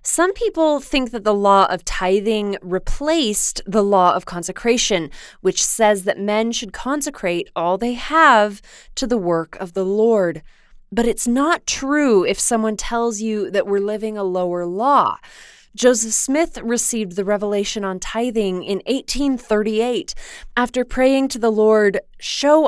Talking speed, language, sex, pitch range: 150 wpm, English, female, 195-255 Hz